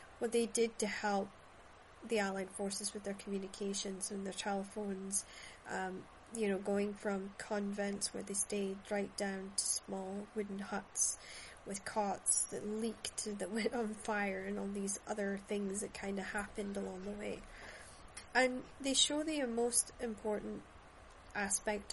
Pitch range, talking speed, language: 195-215 Hz, 155 wpm, English